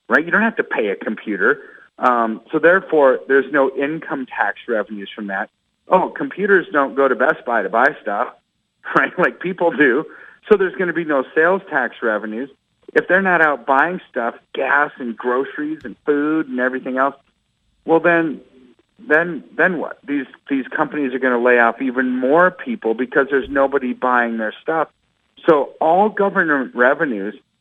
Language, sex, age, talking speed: English, male, 40-59, 175 wpm